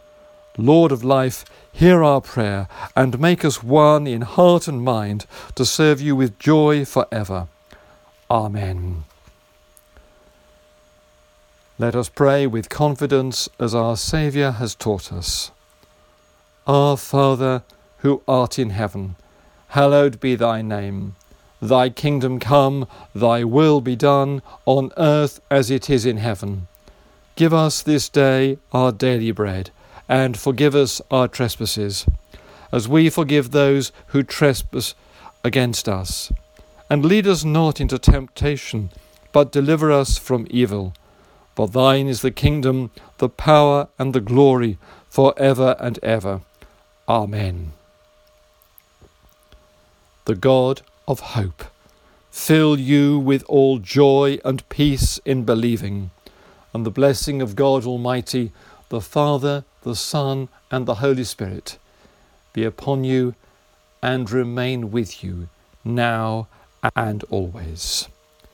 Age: 50-69